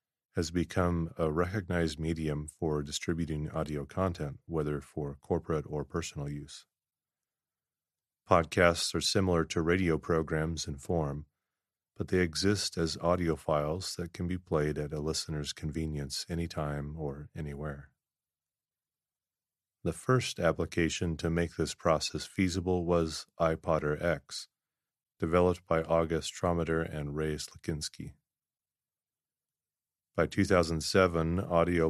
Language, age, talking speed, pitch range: English, 30-49, 115 wpm, 75-90 Hz